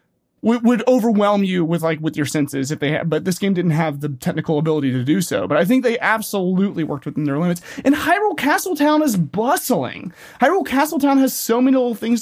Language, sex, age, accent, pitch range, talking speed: English, male, 30-49, American, 160-225 Hz, 210 wpm